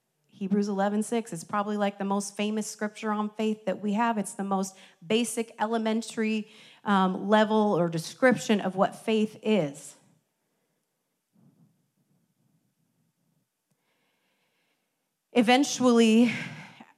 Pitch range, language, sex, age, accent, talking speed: 180-225 Hz, English, female, 30-49, American, 105 wpm